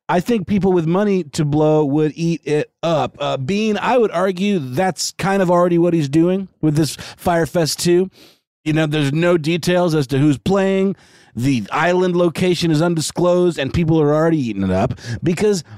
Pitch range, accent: 105-170 Hz, American